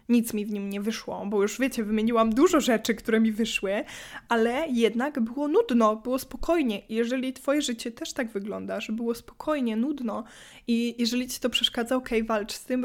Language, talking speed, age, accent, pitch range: Polish, 190 wpm, 20-39, native, 225-255 Hz